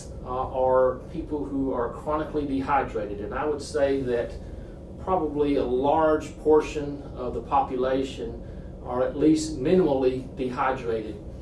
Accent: American